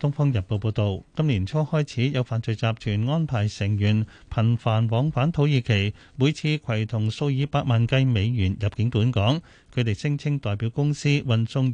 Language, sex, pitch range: Chinese, male, 110-145 Hz